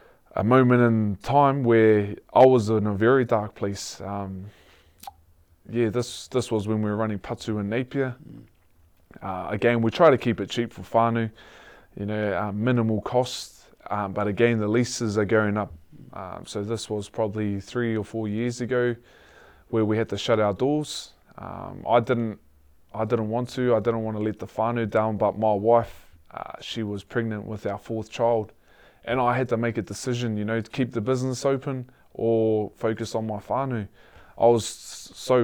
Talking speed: 190 wpm